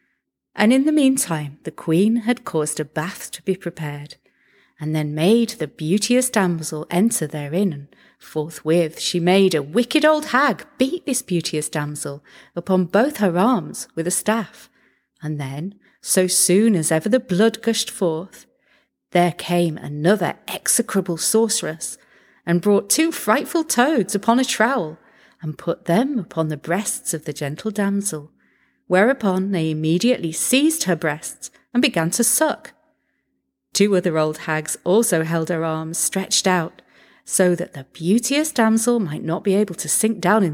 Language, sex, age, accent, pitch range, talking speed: English, female, 40-59, British, 160-225 Hz, 155 wpm